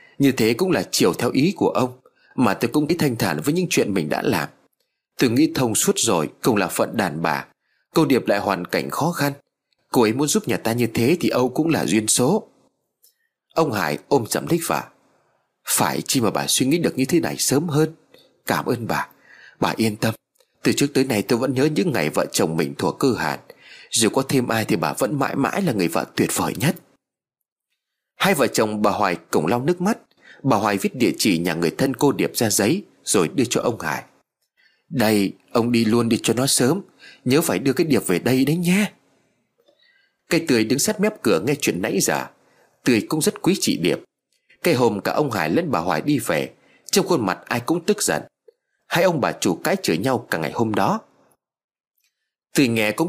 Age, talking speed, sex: 30-49, 220 wpm, male